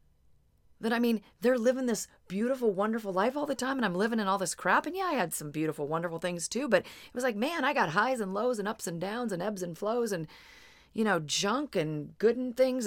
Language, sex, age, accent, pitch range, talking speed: English, female, 40-59, American, 170-230 Hz, 250 wpm